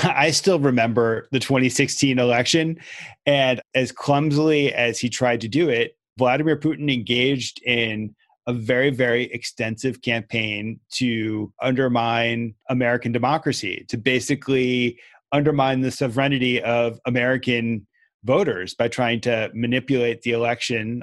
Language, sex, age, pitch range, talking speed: English, male, 30-49, 115-130 Hz, 120 wpm